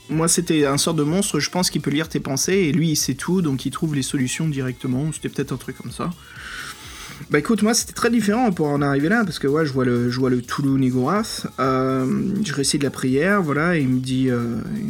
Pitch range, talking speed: 130-160 Hz, 240 wpm